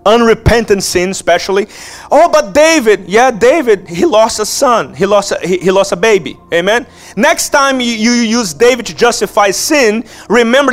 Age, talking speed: 30-49, 170 wpm